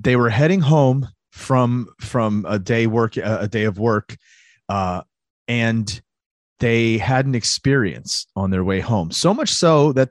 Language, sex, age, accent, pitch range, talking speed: English, male, 30-49, American, 110-135 Hz, 160 wpm